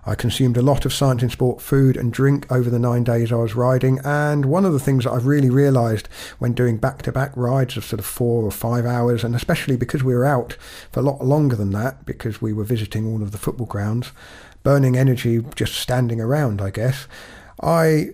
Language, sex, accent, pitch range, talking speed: English, male, British, 110-135 Hz, 220 wpm